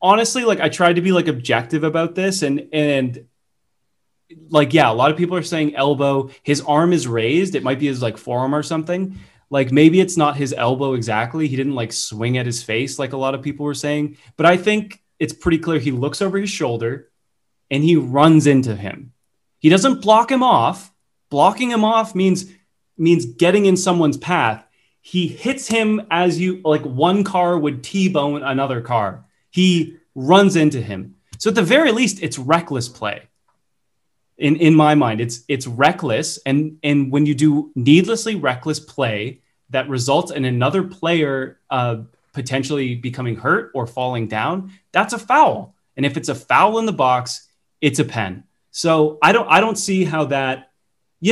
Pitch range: 130-180 Hz